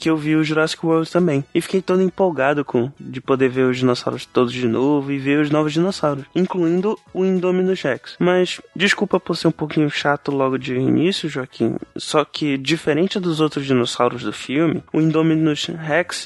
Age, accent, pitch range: 20-39, Brazilian, 150-190 Hz